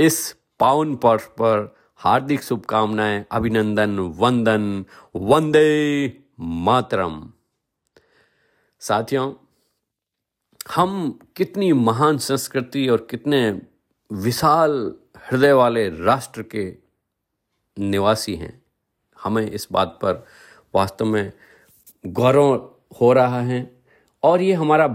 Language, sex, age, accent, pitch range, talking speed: Hindi, male, 50-69, native, 100-135 Hz, 85 wpm